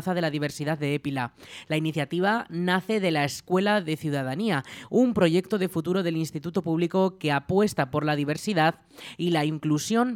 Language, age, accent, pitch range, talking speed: Spanish, 20-39, Spanish, 150-190 Hz, 165 wpm